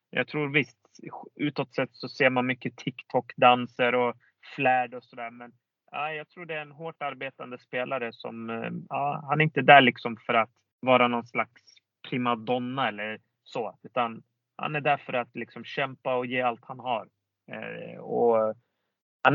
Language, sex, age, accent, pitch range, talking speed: Swedish, male, 30-49, native, 120-155 Hz, 165 wpm